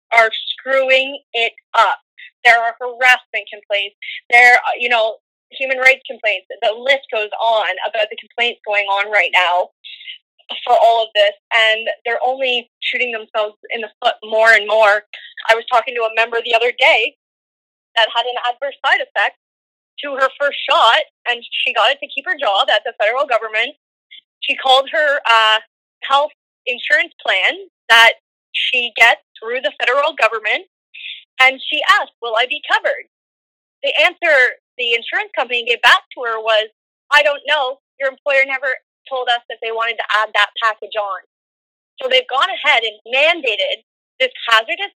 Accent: American